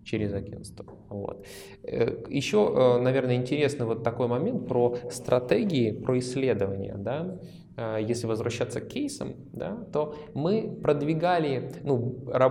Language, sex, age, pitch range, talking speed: Russian, male, 20-39, 120-145 Hz, 90 wpm